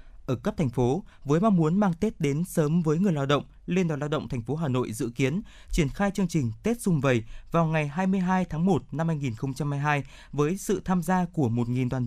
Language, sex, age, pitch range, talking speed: Vietnamese, male, 20-39, 135-180 Hz, 230 wpm